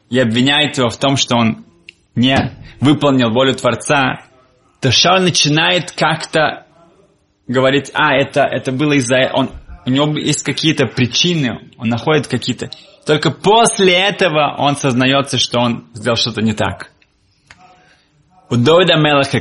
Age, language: 20-39, Russian